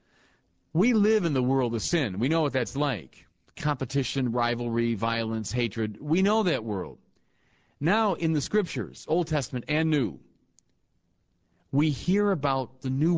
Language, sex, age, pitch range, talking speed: English, male, 40-59, 110-145 Hz, 150 wpm